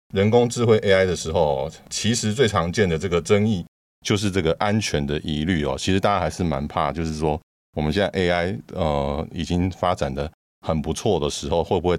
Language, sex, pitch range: Chinese, male, 70-95 Hz